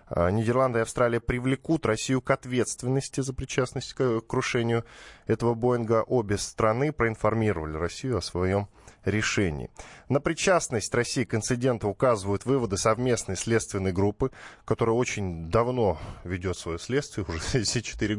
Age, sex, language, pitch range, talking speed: 10-29, male, Russian, 100-125 Hz, 125 wpm